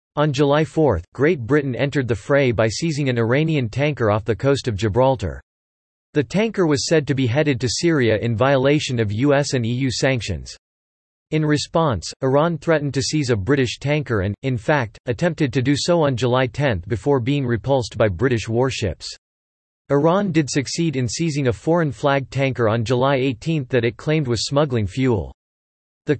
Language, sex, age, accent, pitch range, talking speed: English, male, 40-59, American, 115-150 Hz, 180 wpm